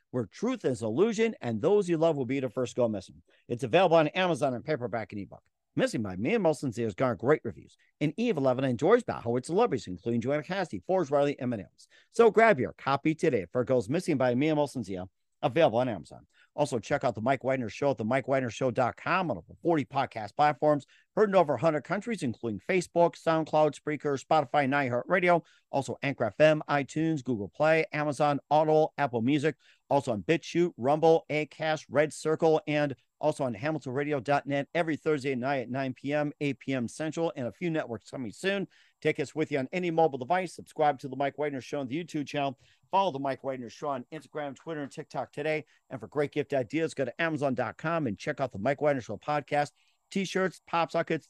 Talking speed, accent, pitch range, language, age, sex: 200 wpm, American, 135-160 Hz, English, 50-69, male